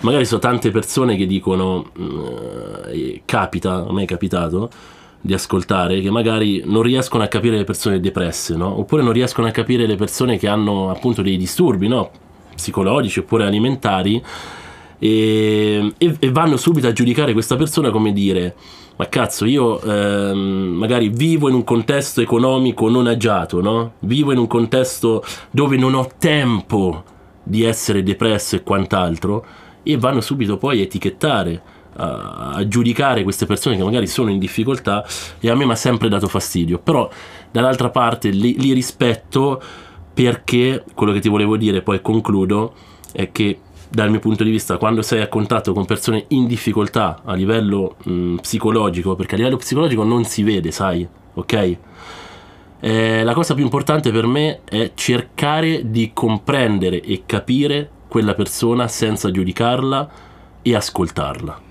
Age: 30-49